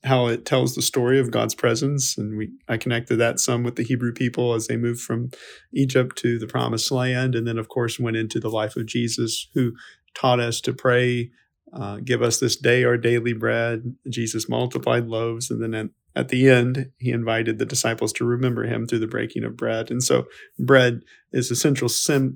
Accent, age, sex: American, 40-59, male